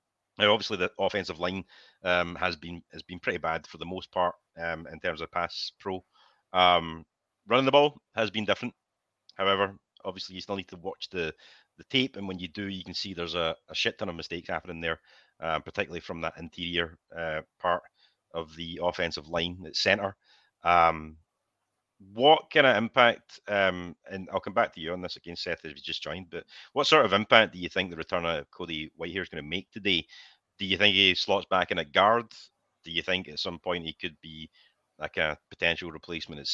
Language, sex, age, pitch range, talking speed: English, male, 30-49, 85-95 Hz, 210 wpm